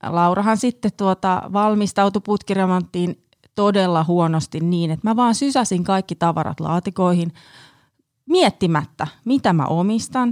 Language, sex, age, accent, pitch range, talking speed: Finnish, female, 30-49, native, 170-210 Hz, 110 wpm